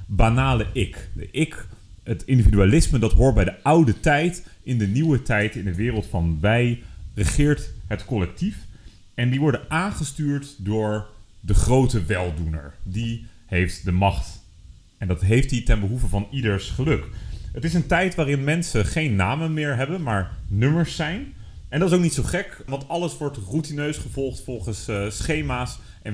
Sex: male